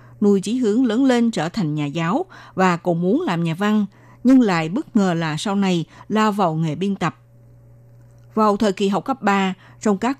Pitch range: 165-225 Hz